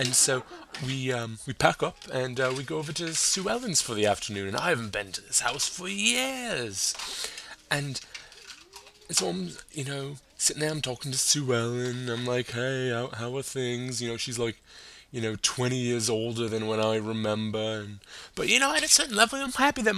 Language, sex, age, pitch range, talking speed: English, male, 20-39, 110-145 Hz, 215 wpm